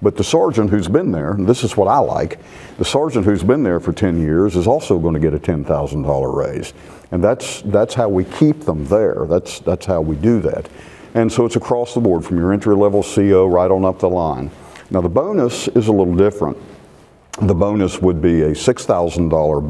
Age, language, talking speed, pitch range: 50-69, English, 215 wpm, 85-105 Hz